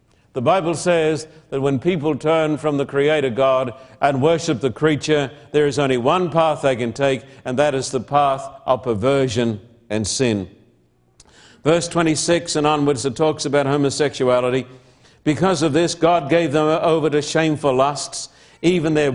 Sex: male